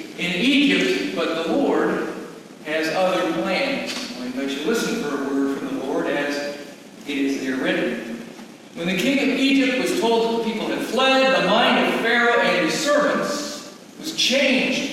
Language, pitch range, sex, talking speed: English, 205-270 Hz, male, 180 wpm